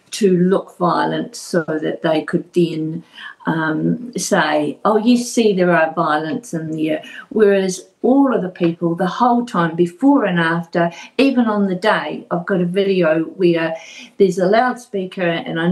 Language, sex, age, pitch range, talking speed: English, female, 50-69, 175-250 Hz, 165 wpm